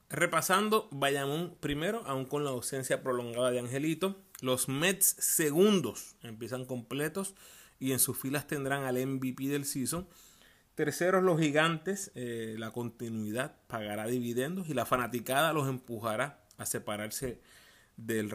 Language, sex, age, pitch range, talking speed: Spanish, male, 30-49, 115-160 Hz, 130 wpm